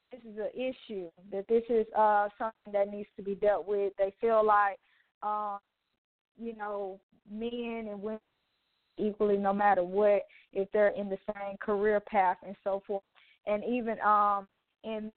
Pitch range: 200-230 Hz